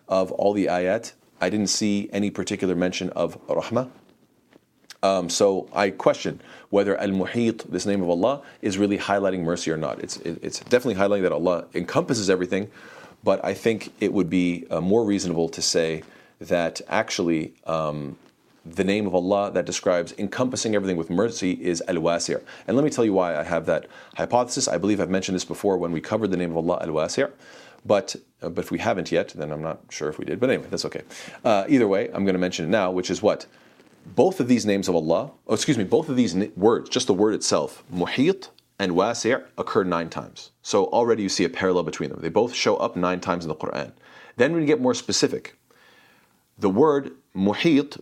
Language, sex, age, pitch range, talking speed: English, male, 40-59, 90-105 Hz, 205 wpm